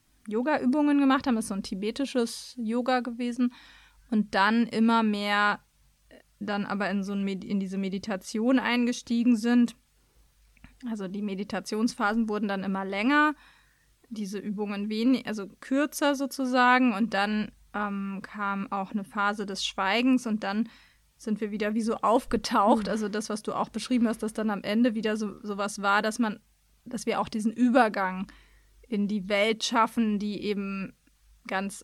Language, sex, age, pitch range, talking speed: German, female, 20-39, 205-245 Hz, 160 wpm